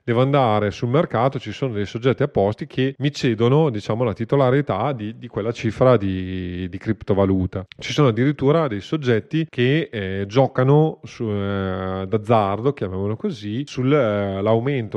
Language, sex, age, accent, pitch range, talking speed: Italian, male, 30-49, native, 105-130 Hz, 145 wpm